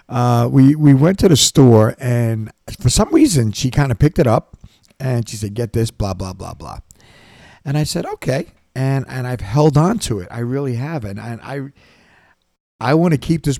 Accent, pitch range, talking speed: American, 110-145 Hz, 210 wpm